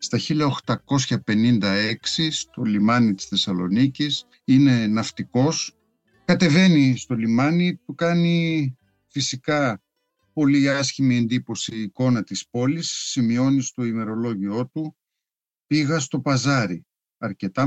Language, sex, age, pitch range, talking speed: English, male, 60-79, 115-160 Hz, 100 wpm